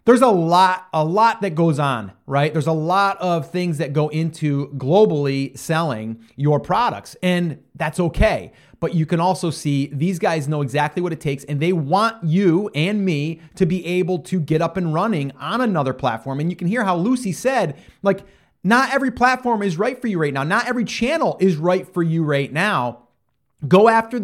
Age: 30-49